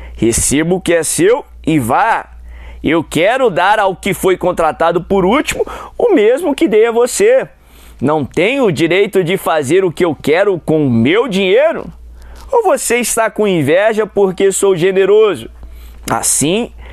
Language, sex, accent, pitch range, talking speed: Portuguese, male, Brazilian, 135-195 Hz, 160 wpm